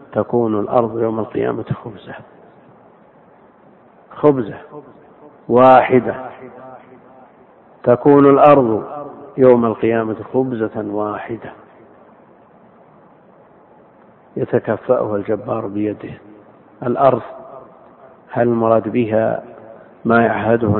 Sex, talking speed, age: male, 65 wpm, 50-69